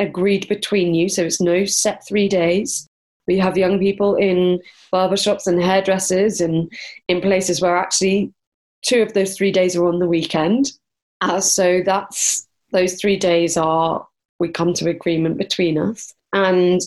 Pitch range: 180-215 Hz